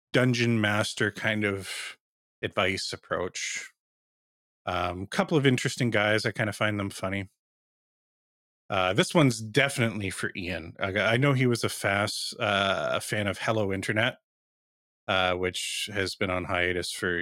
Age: 30-49